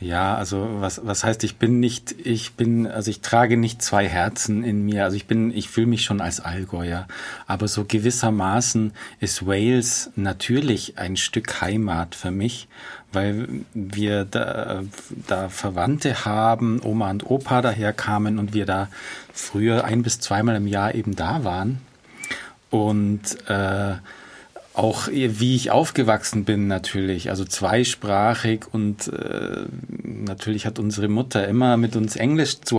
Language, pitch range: German, 100-115 Hz